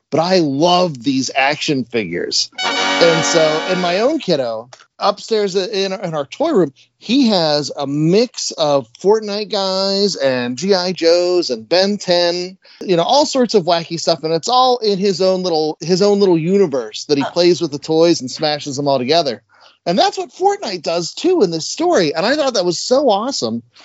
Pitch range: 155-235 Hz